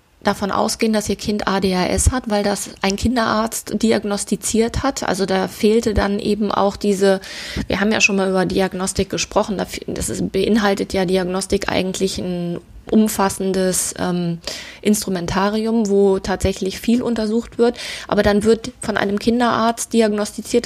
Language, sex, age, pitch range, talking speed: German, female, 20-39, 190-220 Hz, 140 wpm